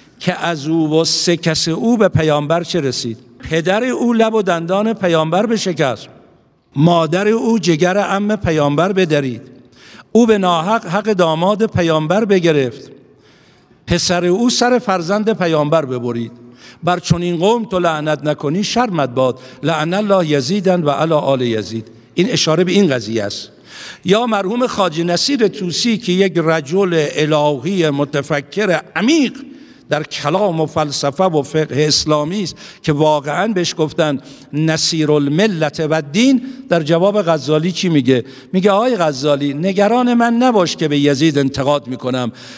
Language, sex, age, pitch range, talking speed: Persian, male, 60-79, 150-200 Hz, 140 wpm